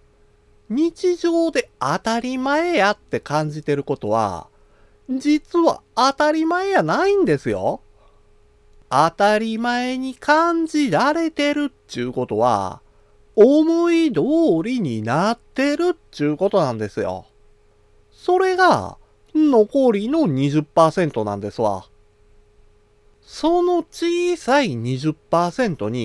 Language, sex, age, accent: Japanese, male, 40-59, native